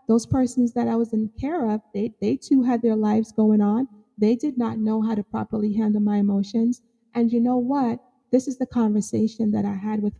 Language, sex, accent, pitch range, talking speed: English, female, American, 210-245 Hz, 225 wpm